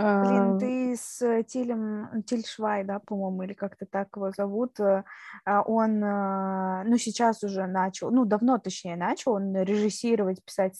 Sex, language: female, Russian